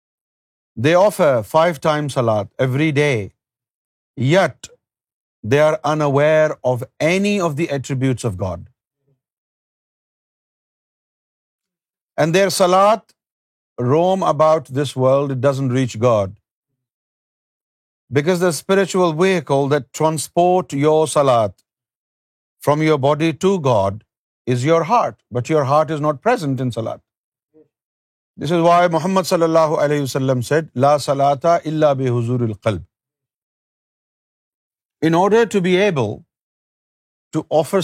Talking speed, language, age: 115 wpm, Urdu, 50-69